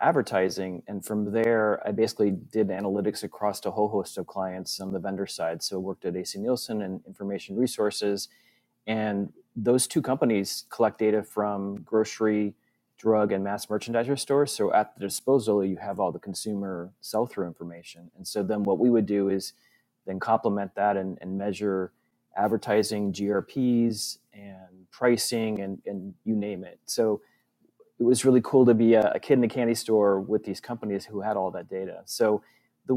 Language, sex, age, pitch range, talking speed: English, male, 30-49, 100-115 Hz, 175 wpm